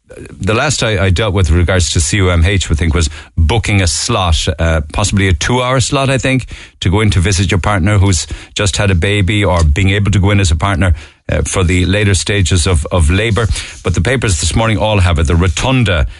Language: English